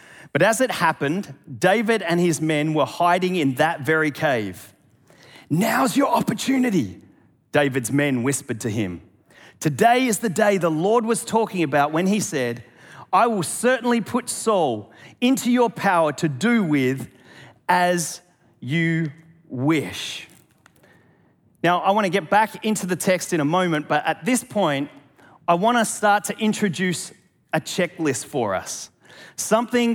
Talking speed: 150 wpm